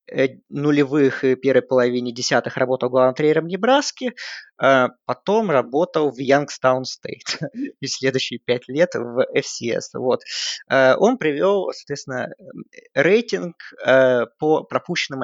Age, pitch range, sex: 20-39, 130-200 Hz, male